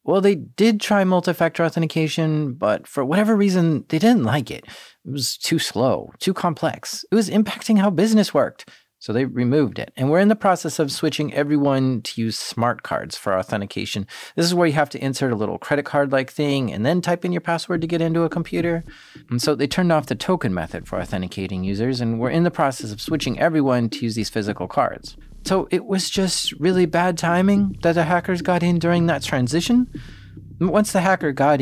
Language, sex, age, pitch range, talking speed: English, male, 30-49, 115-170 Hz, 210 wpm